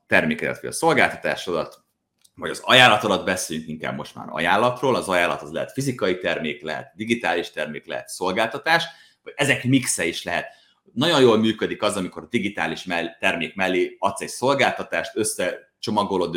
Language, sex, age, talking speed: Hungarian, male, 30-49, 155 wpm